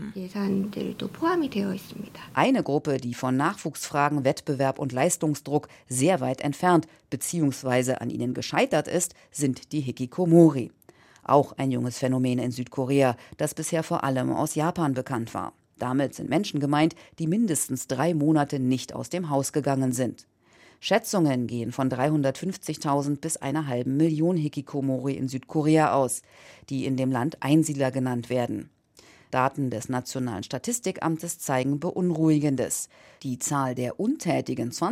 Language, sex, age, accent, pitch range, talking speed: German, female, 40-59, German, 130-165 Hz, 130 wpm